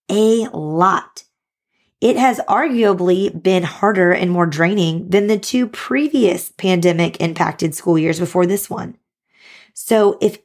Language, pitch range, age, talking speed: English, 175-205 Hz, 20-39, 130 wpm